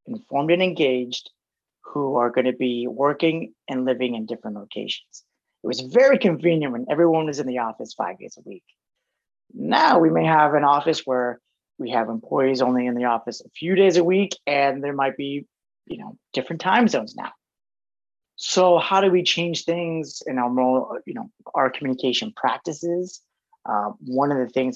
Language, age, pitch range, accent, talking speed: English, 30-49, 125-170 Hz, American, 180 wpm